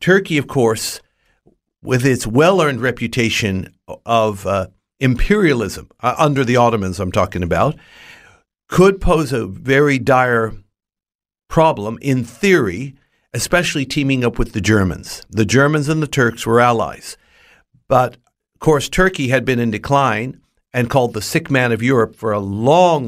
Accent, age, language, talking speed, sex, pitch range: American, 60-79, English, 145 wpm, male, 115-145 Hz